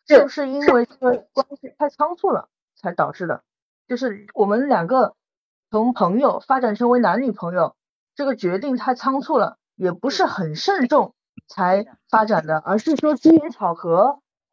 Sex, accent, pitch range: female, native, 205-275 Hz